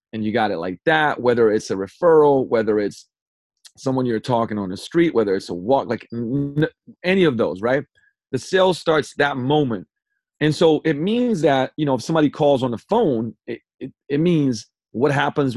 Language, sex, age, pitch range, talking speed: English, male, 30-49, 120-165 Hz, 195 wpm